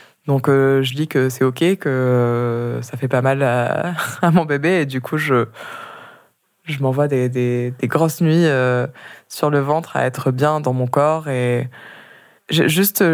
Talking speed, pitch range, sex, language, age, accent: 185 wpm, 135-165 Hz, female, French, 20-39, French